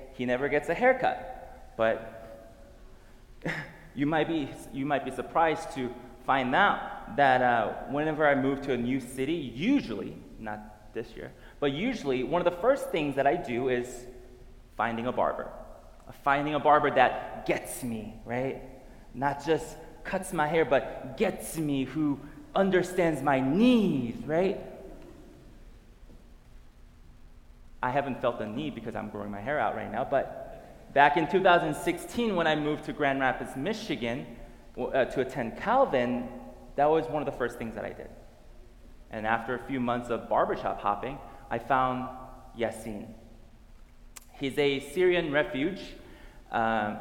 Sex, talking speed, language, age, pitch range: male, 150 wpm, English, 20-39, 120-155 Hz